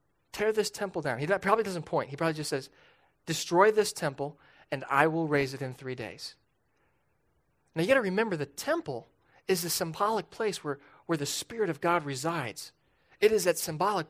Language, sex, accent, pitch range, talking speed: English, male, American, 145-205 Hz, 190 wpm